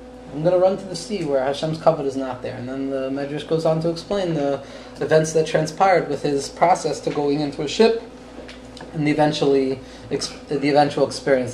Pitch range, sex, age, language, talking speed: 130-165 Hz, male, 20-39, English, 205 wpm